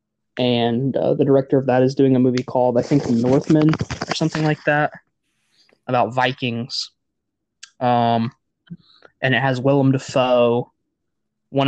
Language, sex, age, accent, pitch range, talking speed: English, male, 20-39, American, 120-135 Hz, 140 wpm